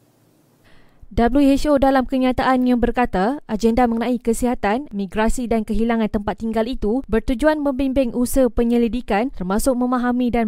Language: Malay